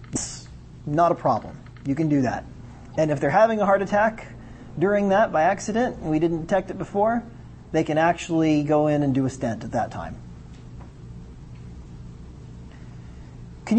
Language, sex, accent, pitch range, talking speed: English, male, American, 110-175 Hz, 155 wpm